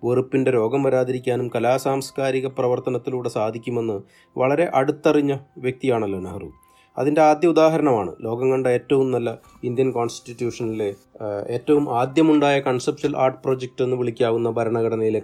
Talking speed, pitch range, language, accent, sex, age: 105 wpm, 120-150 Hz, Malayalam, native, male, 30-49